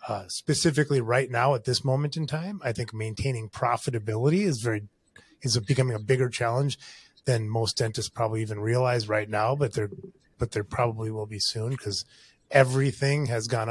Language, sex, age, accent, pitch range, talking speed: English, male, 30-49, American, 110-135 Hz, 175 wpm